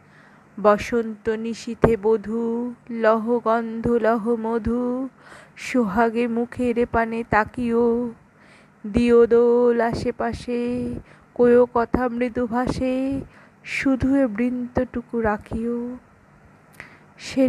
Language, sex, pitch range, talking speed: Bengali, female, 225-250 Hz, 60 wpm